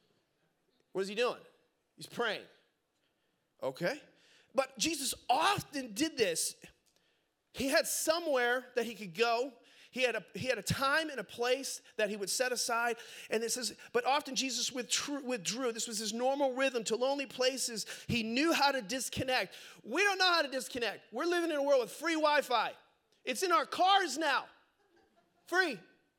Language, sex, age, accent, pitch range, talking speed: English, male, 30-49, American, 215-280 Hz, 170 wpm